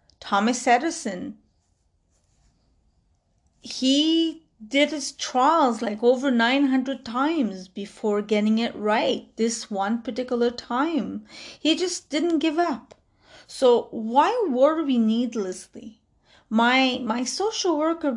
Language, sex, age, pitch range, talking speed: English, female, 30-49, 215-280 Hz, 100 wpm